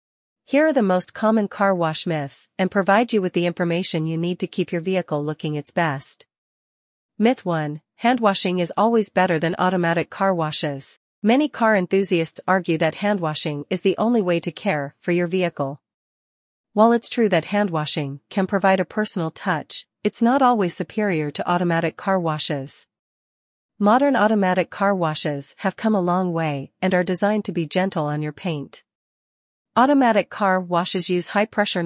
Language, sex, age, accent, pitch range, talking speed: English, female, 40-59, American, 155-205 Hz, 170 wpm